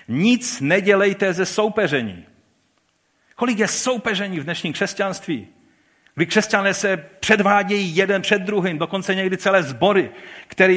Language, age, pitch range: Czech, 40-59, 140-195 Hz